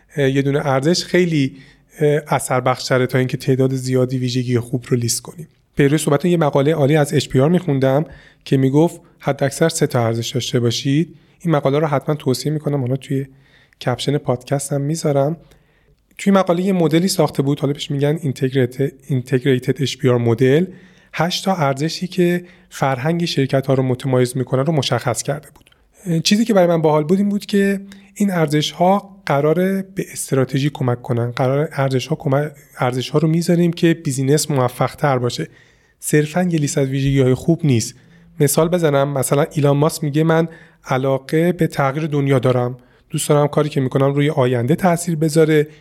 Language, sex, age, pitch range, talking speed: Persian, male, 30-49, 130-165 Hz, 165 wpm